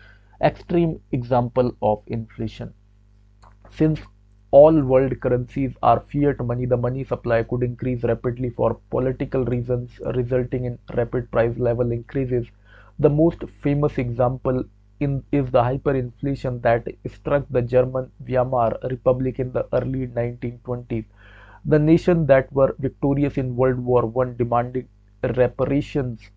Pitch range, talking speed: 115-135 Hz, 125 wpm